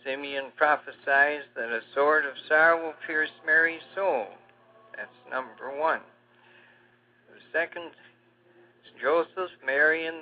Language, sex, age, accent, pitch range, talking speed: English, male, 60-79, American, 140-170 Hz, 115 wpm